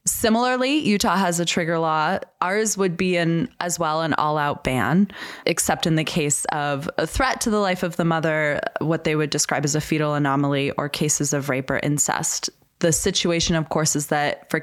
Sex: female